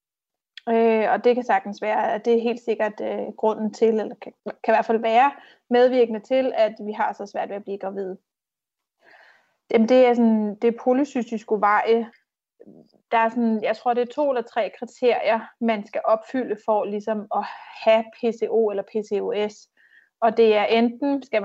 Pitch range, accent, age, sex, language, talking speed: 215-240 Hz, native, 30-49, female, Danish, 170 wpm